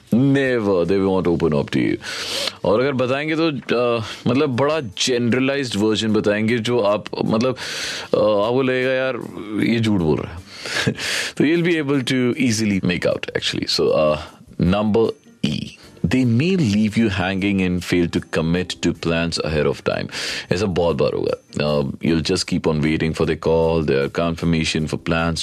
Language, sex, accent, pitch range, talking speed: Hindi, male, native, 85-120 Hz, 170 wpm